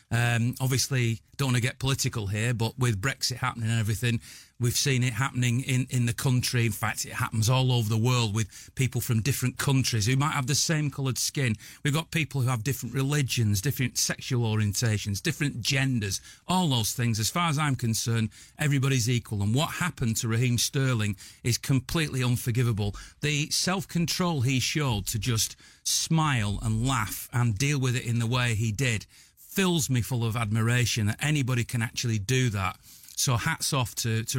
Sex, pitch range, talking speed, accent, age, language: male, 115-135 Hz, 185 wpm, British, 40-59, English